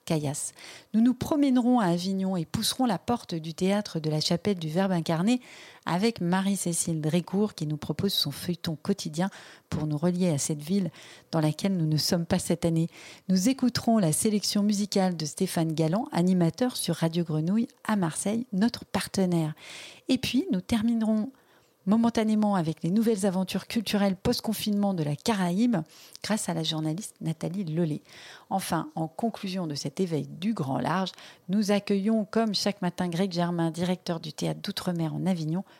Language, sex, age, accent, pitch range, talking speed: French, female, 40-59, French, 165-220 Hz, 165 wpm